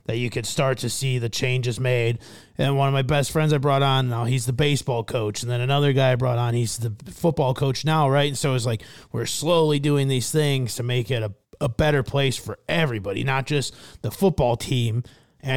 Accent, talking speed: American, 235 wpm